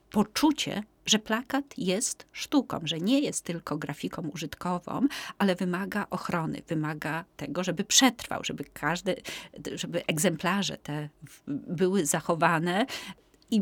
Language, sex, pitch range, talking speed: Polish, female, 160-205 Hz, 115 wpm